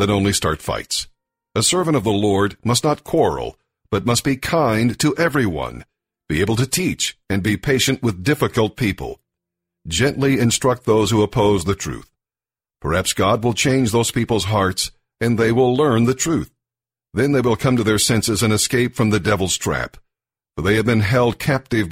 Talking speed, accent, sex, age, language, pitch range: 185 wpm, American, male, 50-69, English, 105-125 Hz